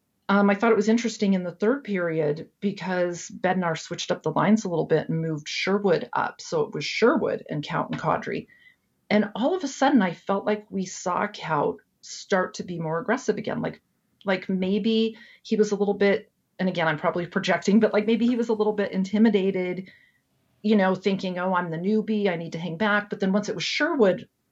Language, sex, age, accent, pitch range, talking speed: English, female, 40-59, American, 170-215 Hz, 215 wpm